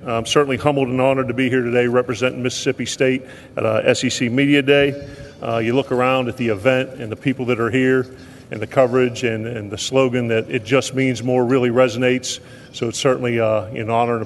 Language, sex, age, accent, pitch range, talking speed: English, male, 40-59, American, 125-140 Hz, 215 wpm